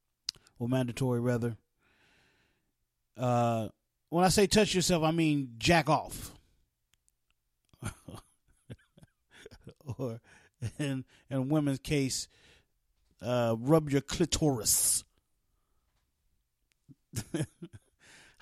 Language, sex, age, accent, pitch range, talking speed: English, male, 30-49, American, 115-155 Hz, 75 wpm